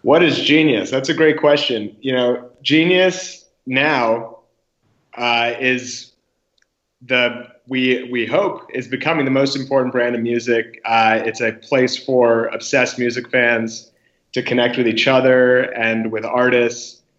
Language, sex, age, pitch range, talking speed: English, male, 30-49, 110-125 Hz, 145 wpm